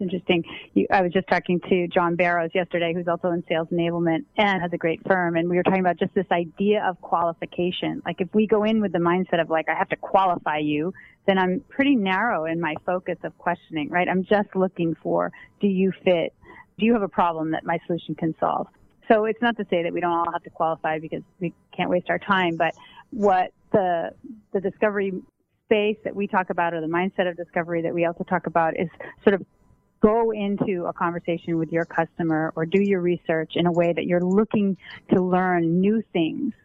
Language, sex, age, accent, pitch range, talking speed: English, female, 30-49, American, 165-195 Hz, 220 wpm